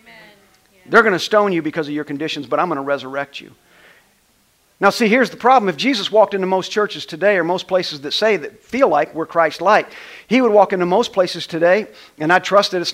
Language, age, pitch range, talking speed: English, 50-69, 180-230 Hz, 225 wpm